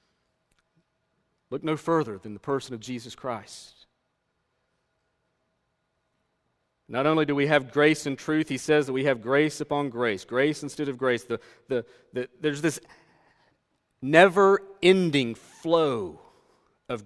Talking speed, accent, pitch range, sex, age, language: 120 wpm, American, 135-185 Hz, male, 40-59, English